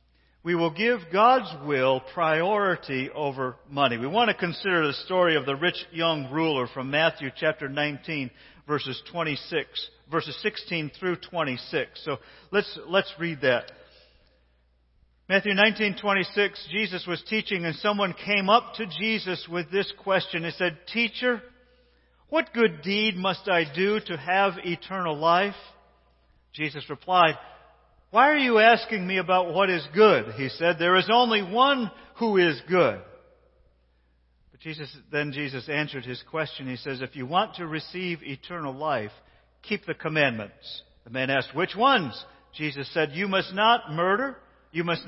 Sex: male